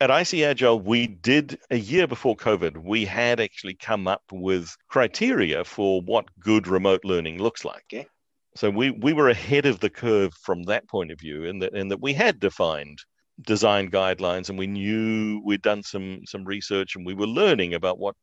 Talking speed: 195 wpm